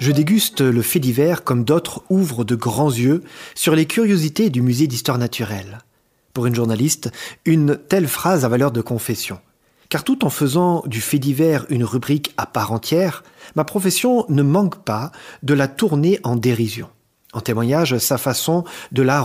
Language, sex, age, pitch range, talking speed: French, male, 30-49, 120-160 Hz, 175 wpm